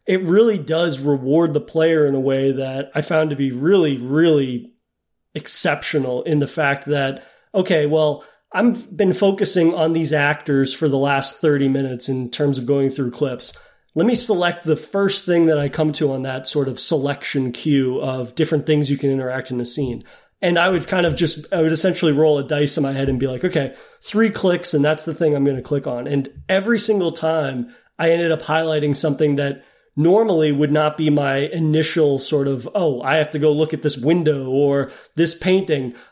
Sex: male